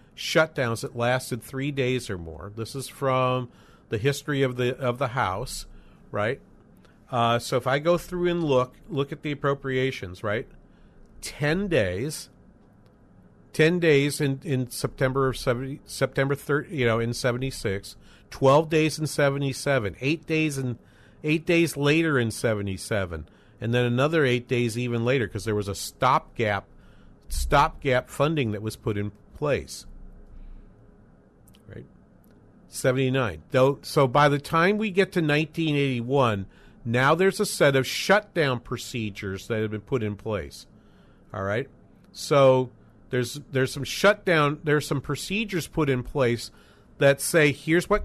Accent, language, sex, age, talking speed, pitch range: American, English, male, 50-69, 150 wpm, 120-150 Hz